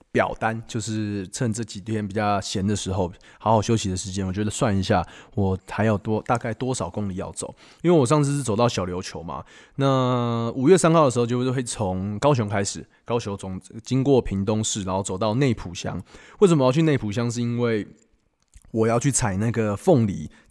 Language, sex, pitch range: Chinese, male, 100-130 Hz